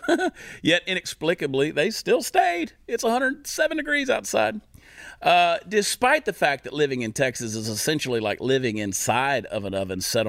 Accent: American